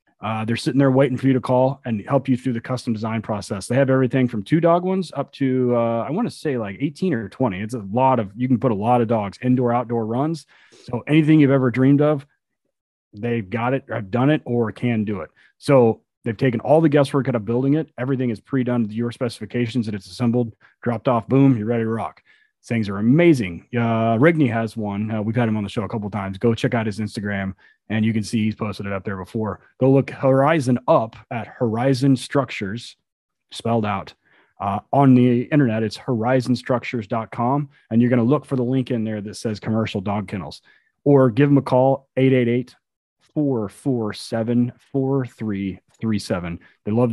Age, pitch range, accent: 30-49, 110-135 Hz, American